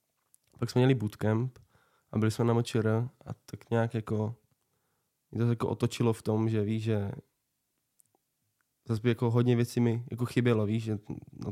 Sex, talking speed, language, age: male, 170 wpm, Czech, 20-39